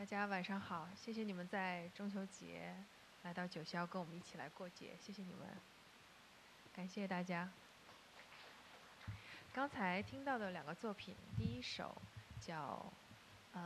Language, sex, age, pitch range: Chinese, female, 20-39, 175-210 Hz